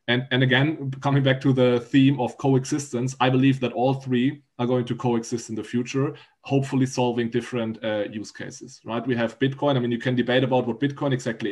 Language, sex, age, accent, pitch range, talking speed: English, male, 20-39, German, 115-135 Hz, 215 wpm